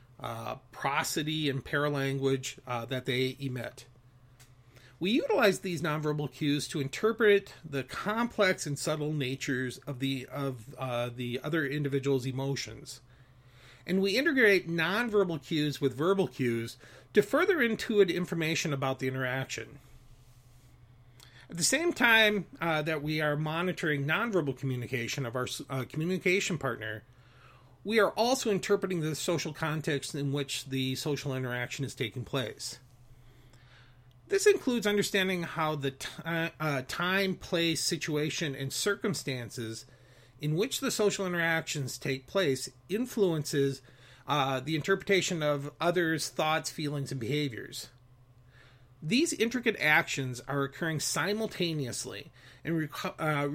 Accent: American